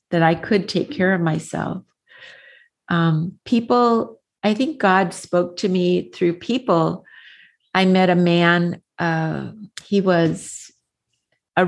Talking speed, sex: 130 wpm, female